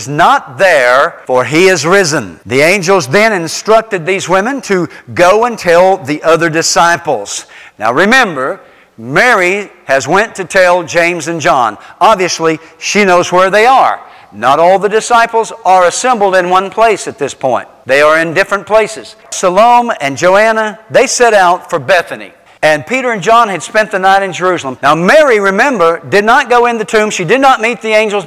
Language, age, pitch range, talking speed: English, 60-79, 165-220 Hz, 180 wpm